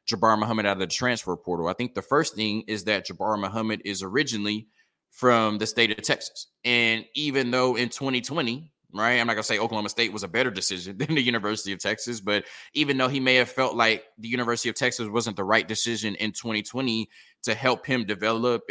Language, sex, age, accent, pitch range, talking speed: English, male, 20-39, American, 105-125 Hz, 210 wpm